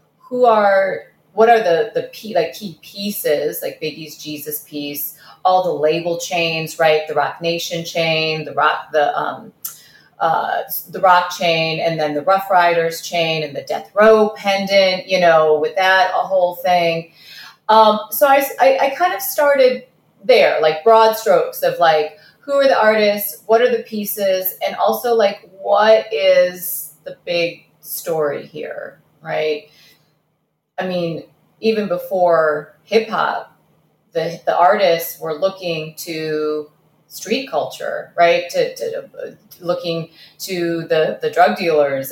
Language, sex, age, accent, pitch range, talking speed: English, female, 30-49, American, 155-210 Hz, 150 wpm